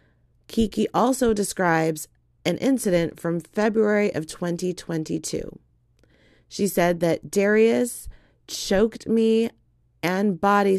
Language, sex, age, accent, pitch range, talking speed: English, female, 30-49, American, 160-200 Hz, 95 wpm